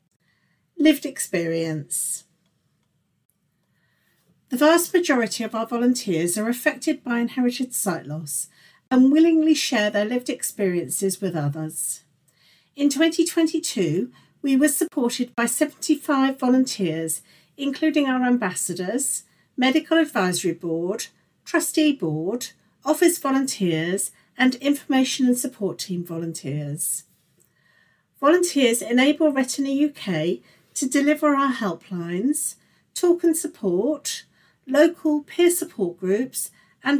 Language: English